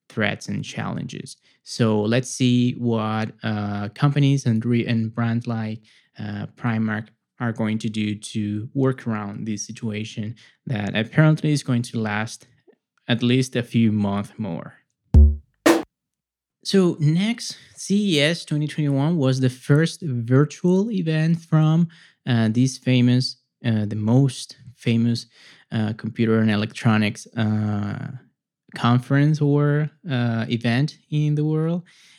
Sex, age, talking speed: male, 20-39, 120 wpm